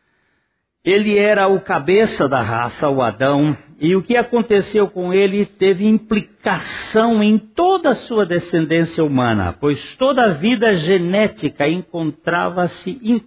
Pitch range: 145-205 Hz